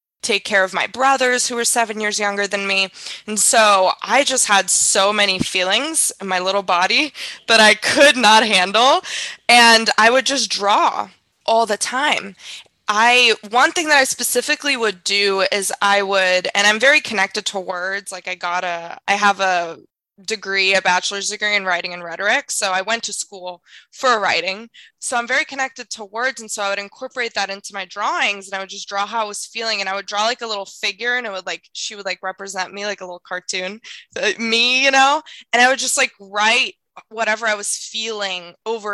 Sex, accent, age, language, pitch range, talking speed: female, American, 20-39, English, 190-230 Hz, 210 wpm